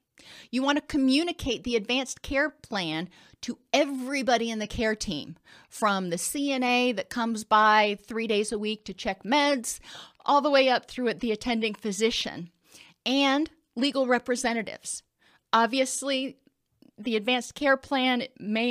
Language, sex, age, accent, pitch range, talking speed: English, female, 30-49, American, 205-250 Hz, 140 wpm